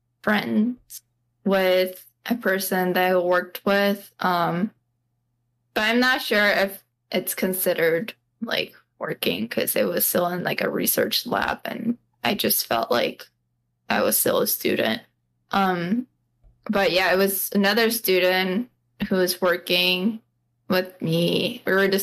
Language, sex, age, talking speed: English, female, 10-29, 140 wpm